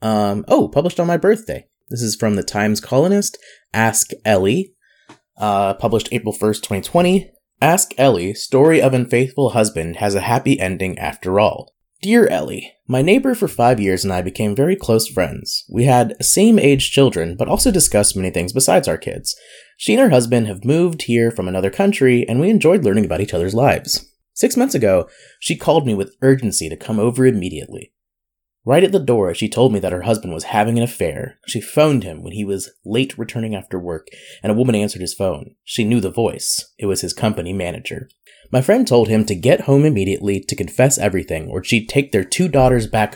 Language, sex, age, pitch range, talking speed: English, male, 20-39, 100-140 Hz, 200 wpm